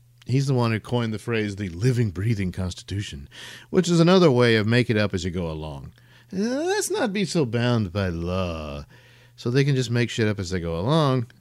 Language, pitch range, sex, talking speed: English, 95-125 Hz, male, 215 wpm